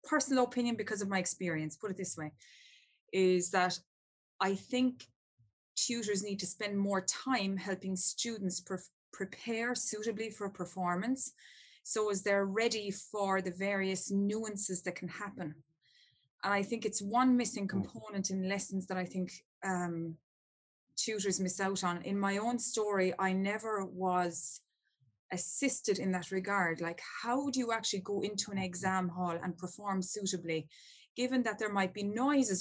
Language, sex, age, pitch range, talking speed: English, female, 20-39, 180-215 Hz, 160 wpm